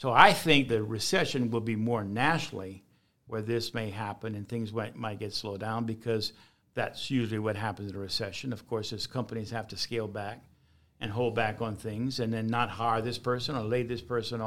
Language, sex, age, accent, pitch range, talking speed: English, male, 50-69, American, 110-130 Hz, 210 wpm